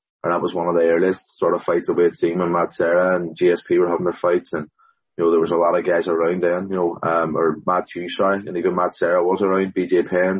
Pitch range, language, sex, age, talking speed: 90-100 Hz, English, male, 20-39, 290 wpm